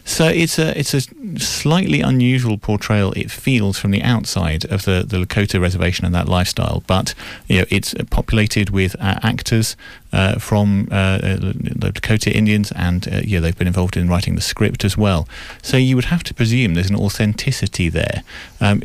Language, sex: English, male